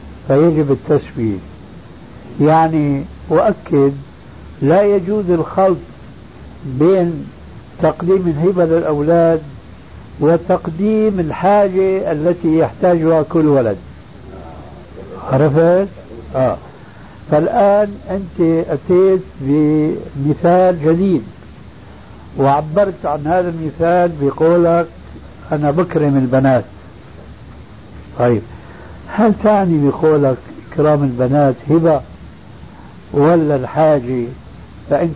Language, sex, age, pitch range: Arabic, male, 60-79, 140-185 Hz